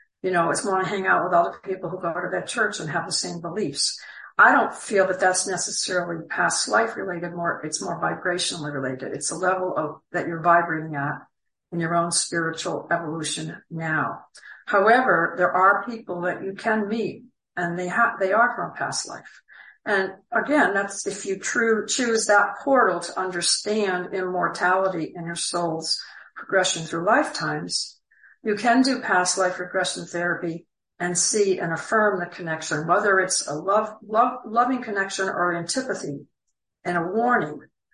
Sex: female